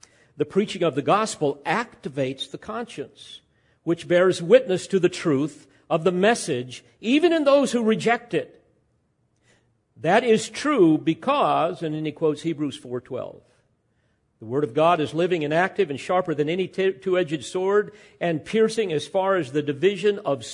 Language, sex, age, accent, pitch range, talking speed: English, male, 50-69, American, 135-185 Hz, 160 wpm